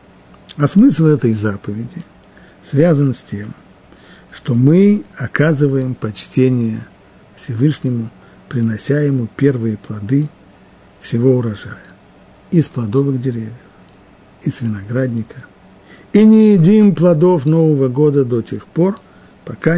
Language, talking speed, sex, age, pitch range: Russian, 100 wpm, male, 50-69, 115-155 Hz